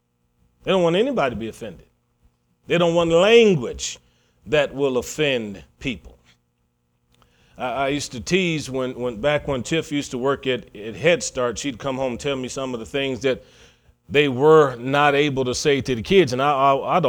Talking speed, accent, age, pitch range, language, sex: 190 wpm, American, 40-59, 130-175 Hz, English, male